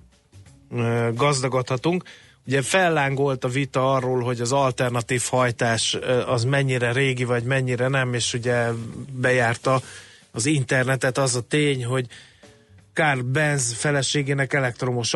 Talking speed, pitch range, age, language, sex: 115 wpm, 120-135 Hz, 30-49, Hungarian, male